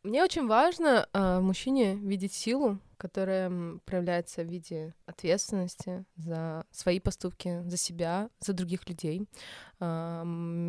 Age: 20-39